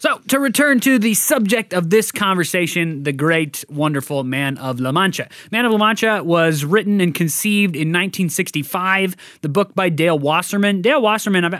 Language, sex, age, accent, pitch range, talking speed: English, male, 20-39, American, 150-190 Hz, 175 wpm